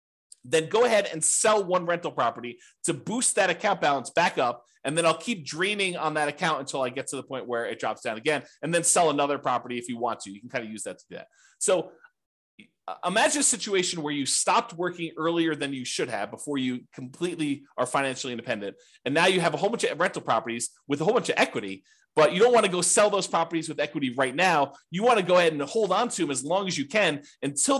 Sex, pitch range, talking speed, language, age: male, 140-195 Hz, 255 wpm, English, 30-49